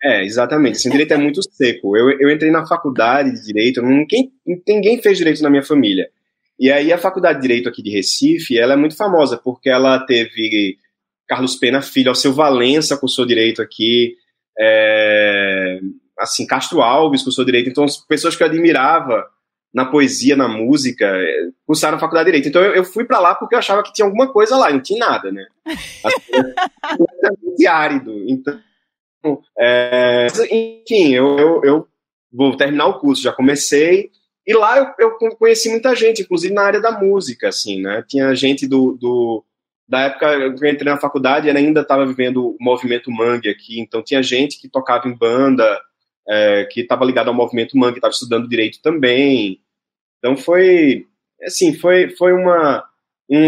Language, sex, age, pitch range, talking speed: Portuguese, male, 20-39, 125-195 Hz, 180 wpm